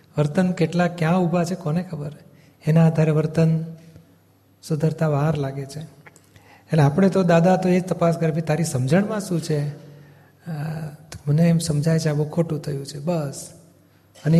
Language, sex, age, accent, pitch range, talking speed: Gujarati, male, 40-59, native, 150-175 Hz, 145 wpm